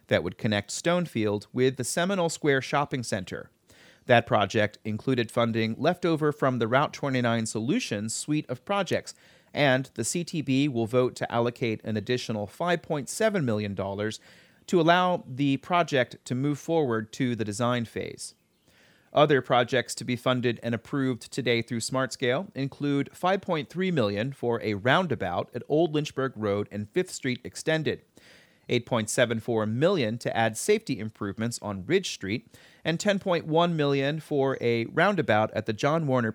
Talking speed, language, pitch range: 150 wpm, English, 110-150 Hz